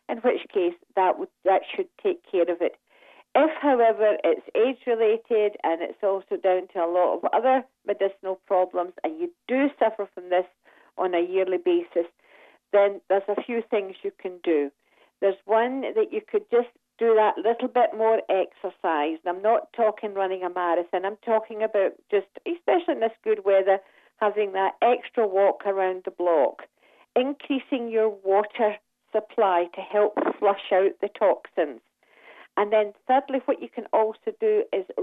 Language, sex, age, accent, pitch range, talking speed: English, female, 50-69, British, 195-280 Hz, 165 wpm